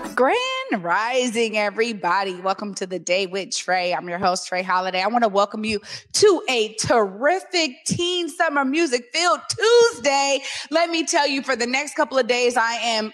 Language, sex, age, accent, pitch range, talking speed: English, female, 20-39, American, 210-295 Hz, 180 wpm